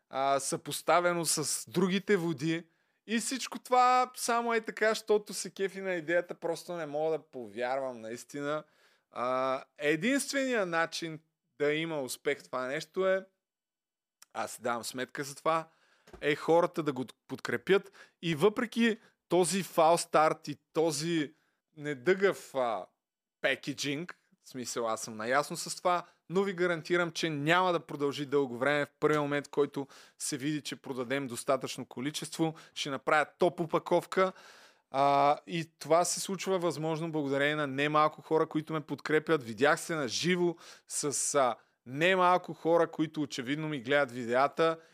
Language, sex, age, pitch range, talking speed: Bulgarian, male, 20-39, 145-180 Hz, 140 wpm